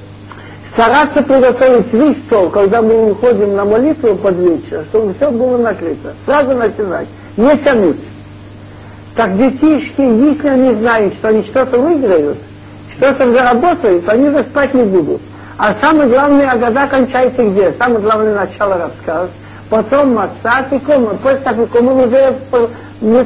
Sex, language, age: male, Russian, 60-79